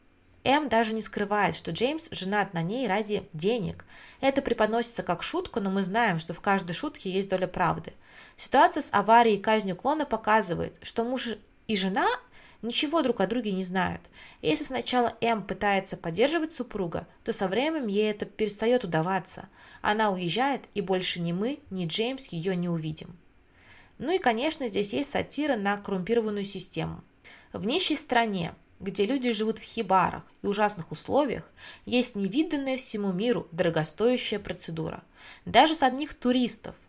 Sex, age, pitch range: female, 20-39, 180-245 Hz